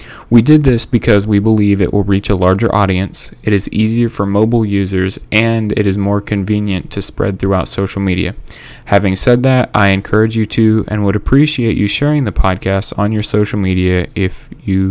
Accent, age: American, 20-39